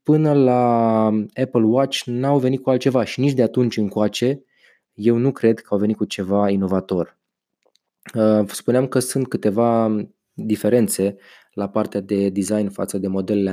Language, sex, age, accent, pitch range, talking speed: Romanian, male, 20-39, native, 100-115 Hz, 150 wpm